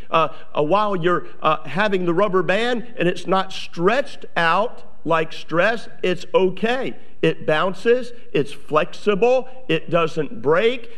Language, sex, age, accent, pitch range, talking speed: English, male, 50-69, American, 175-220 Hz, 135 wpm